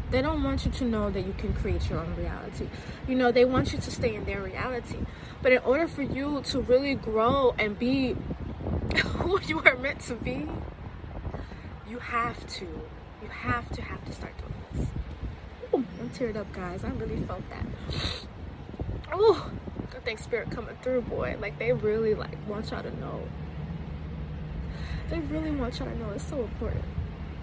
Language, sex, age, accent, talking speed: English, female, 20-39, American, 180 wpm